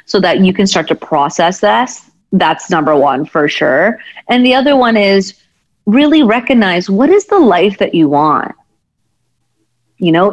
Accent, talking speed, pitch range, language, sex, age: American, 170 wpm, 185-245 Hz, English, female, 30-49